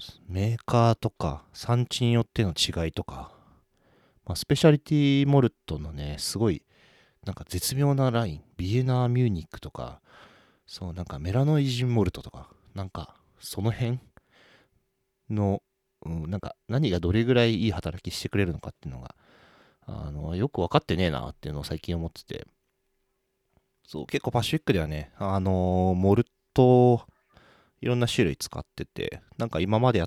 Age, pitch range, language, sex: 40-59, 85-125 Hz, Japanese, male